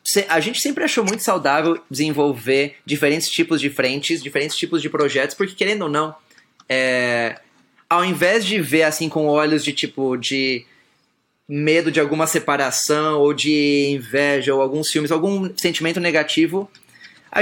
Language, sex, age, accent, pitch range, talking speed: Portuguese, male, 20-39, Brazilian, 150-175 Hz, 150 wpm